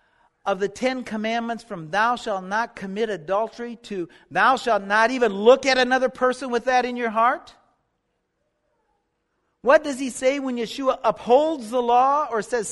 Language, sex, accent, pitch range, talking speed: English, male, American, 210-275 Hz, 165 wpm